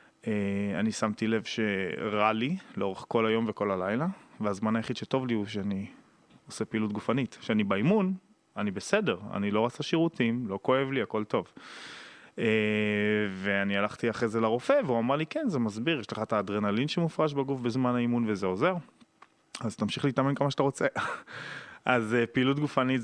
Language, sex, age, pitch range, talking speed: Hebrew, male, 20-39, 105-135 Hz, 170 wpm